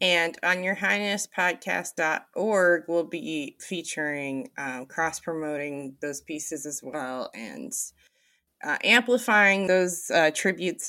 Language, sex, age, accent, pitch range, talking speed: English, female, 30-49, American, 160-240 Hz, 105 wpm